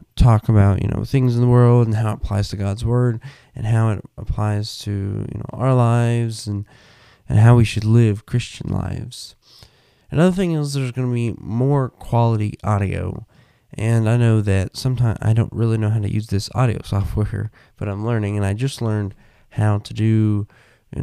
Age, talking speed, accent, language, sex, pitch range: 20-39, 195 wpm, American, English, male, 100-120 Hz